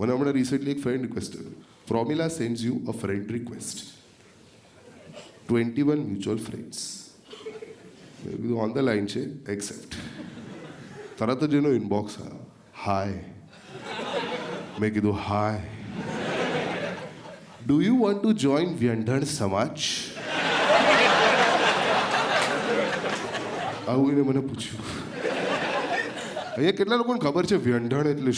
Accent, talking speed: native, 95 wpm